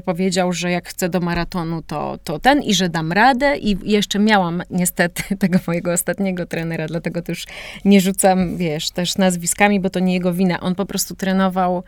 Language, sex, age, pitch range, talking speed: Polish, female, 30-49, 180-225 Hz, 185 wpm